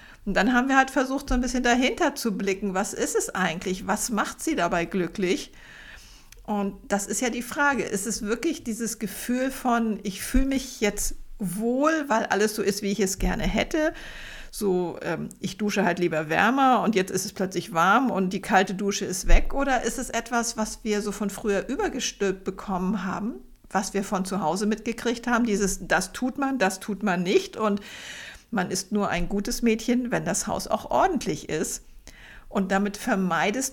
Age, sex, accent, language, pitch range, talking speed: 50-69, female, German, German, 195-245 Hz, 195 wpm